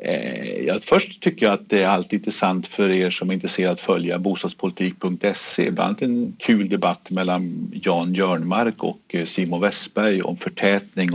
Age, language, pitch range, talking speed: 50-69, Swedish, 90-100 Hz, 150 wpm